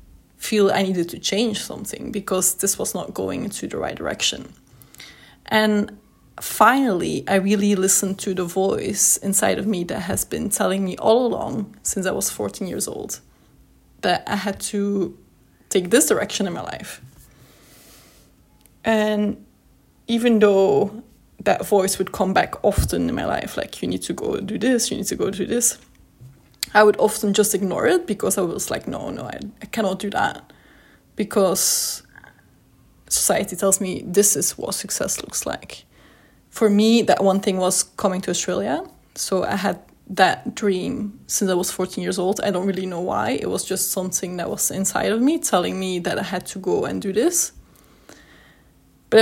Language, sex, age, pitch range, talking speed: English, female, 20-39, 190-215 Hz, 180 wpm